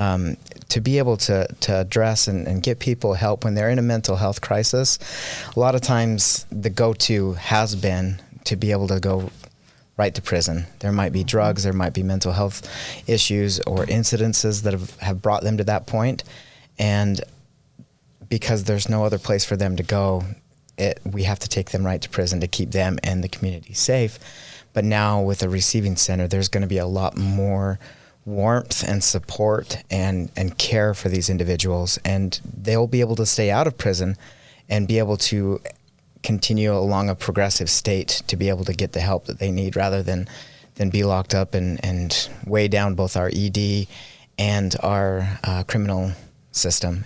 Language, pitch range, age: English, 95-110 Hz, 30-49